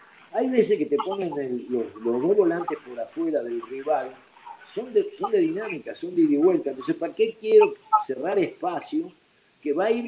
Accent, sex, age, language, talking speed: Argentinian, male, 50-69, Spanish, 190 wpm